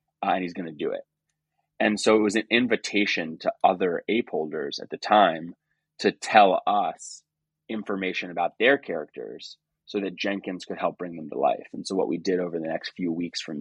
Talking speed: 205 wpm